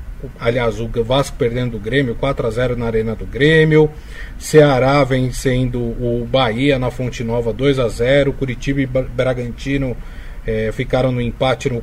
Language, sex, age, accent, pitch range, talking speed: Portuguese, male, 20-39, Brazilian, 120-150 Hz, 135 wpm